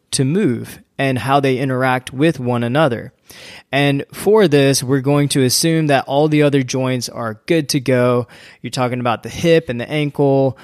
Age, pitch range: 20-39, 125-145 Hz